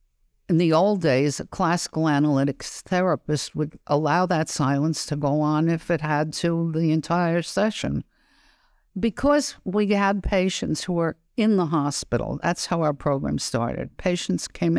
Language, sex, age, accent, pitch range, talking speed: Hebrew, female, 60-79, American, 150-190 Hz, 155 wpm